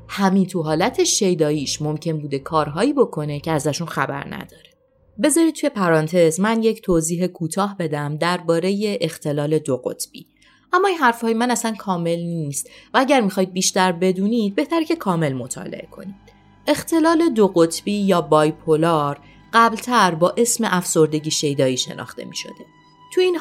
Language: Persian